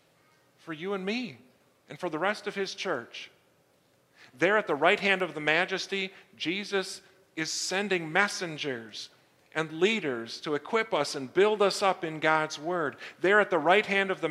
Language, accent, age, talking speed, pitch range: English, American, 40-59, 175 wpm, 155-195 Hz